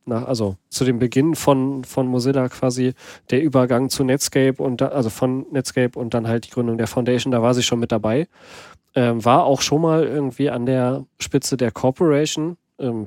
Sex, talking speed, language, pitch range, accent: male, 195 wpm, German, 120-135 Hz, German